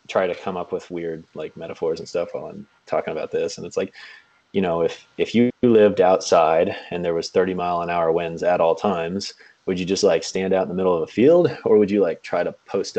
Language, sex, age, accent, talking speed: English, male, 30-49, American, 255 wpm